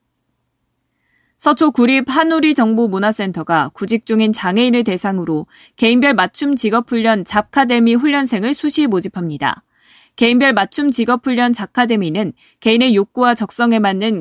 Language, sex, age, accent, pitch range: Korean, female, 20-39, native, 200-255 Hz